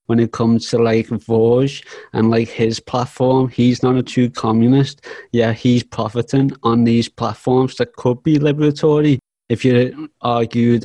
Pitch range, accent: 115-125 Hz, British